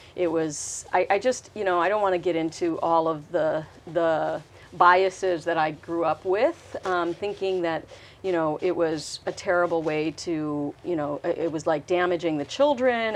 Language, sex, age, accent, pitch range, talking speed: English, female, 40-59, American, 165-205 Hz, 190 wpm